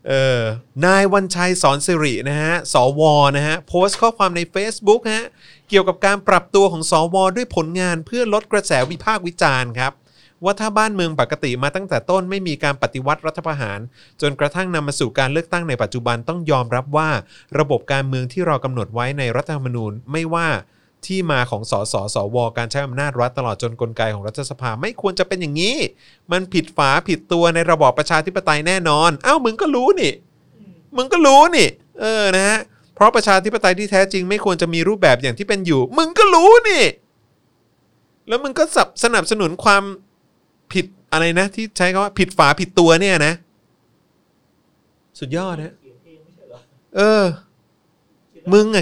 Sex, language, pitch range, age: male, Thai, 140-195 Hz, 30-49